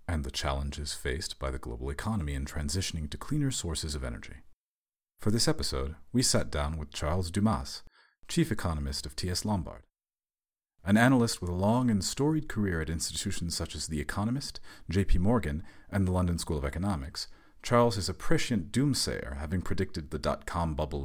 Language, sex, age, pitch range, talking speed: English, male, 40-59, 75-100 Hz, 175 wpm